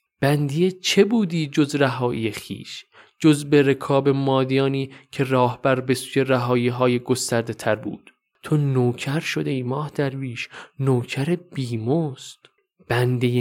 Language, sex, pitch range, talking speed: Persian, male, 120-155 Hz, 125 wpm